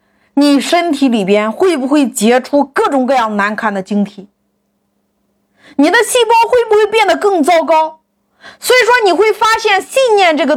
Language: Chinese